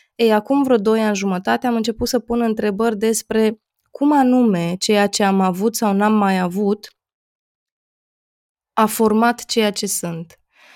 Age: 20-39